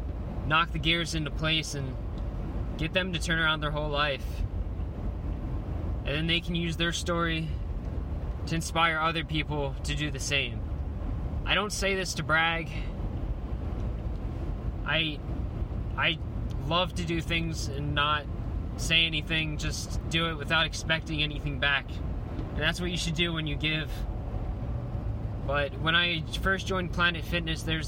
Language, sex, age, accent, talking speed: English, male, 20-39, American, 150 wpm